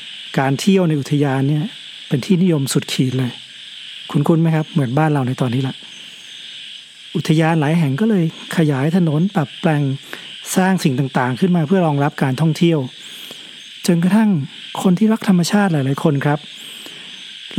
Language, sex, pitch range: Thai, male, 140-180 Hz